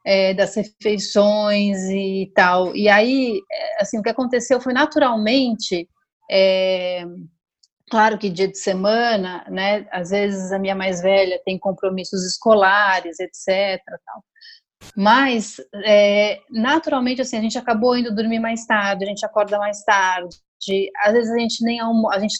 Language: Portuguese